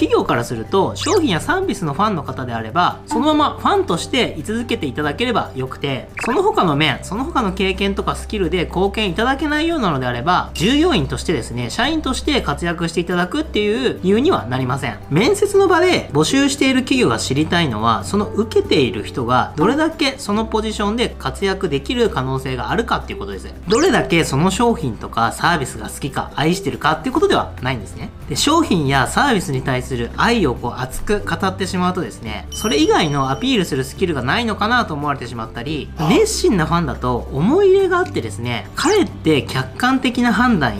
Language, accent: Japanese, native